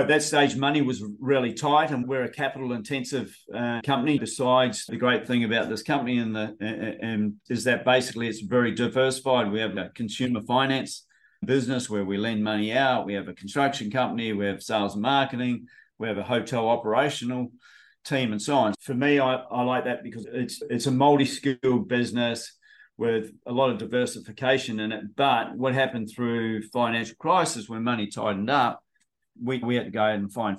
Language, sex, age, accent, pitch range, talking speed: English, male, 40-59, Australian, 110-130 Hz, 190 wpm